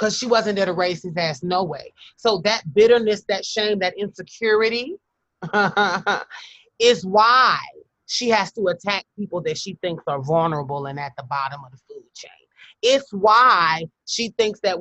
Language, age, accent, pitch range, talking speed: English, 30-49, American, 170-215 Hz, 165 wpm